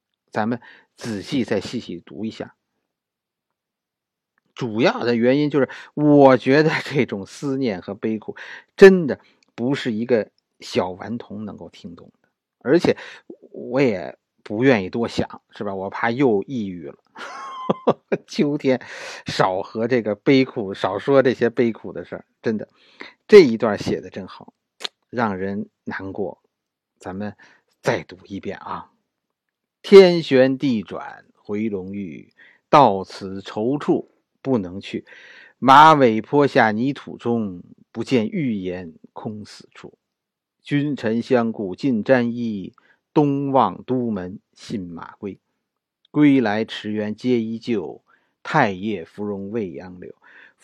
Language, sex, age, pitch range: Chinese, male, 50-69, 105-140 Hz